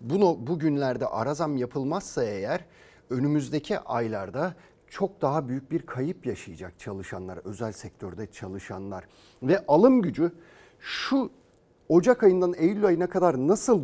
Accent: native